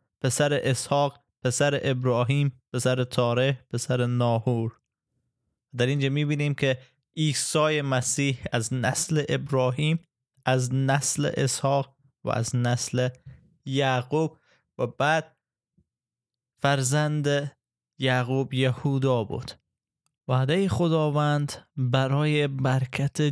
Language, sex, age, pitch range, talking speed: Persian, male, 20-39, 125-140 Hz, 85 wpm